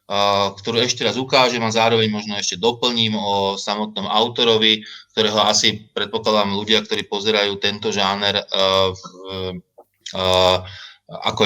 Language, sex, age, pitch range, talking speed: Slovak, male, 20-39, 95-115 Hz, 130 wpm